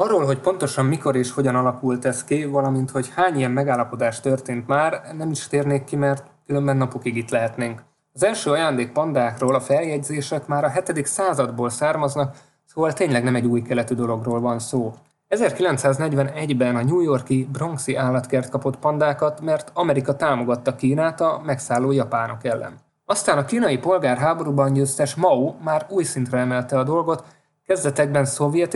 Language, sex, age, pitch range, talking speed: Hungarian, male, 20-39, 130-155 Hz, 155 wpm